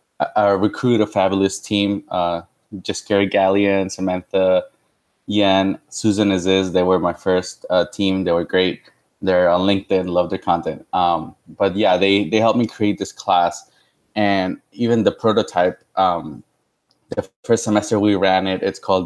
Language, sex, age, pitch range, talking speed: English, male, 20-39, 90-105 Hz, 160 wpm